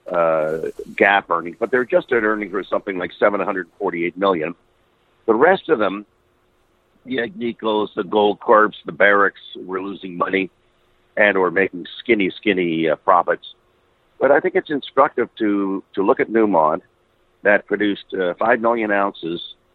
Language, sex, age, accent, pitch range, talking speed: English, male, 50-69, American, 95-130 Hz, 150 wpm